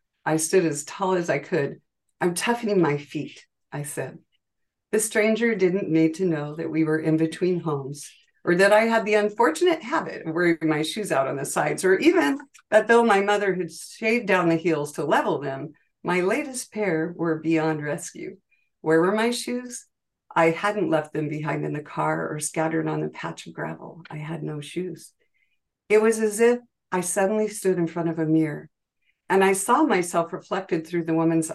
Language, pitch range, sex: English, 160-215 Hz, female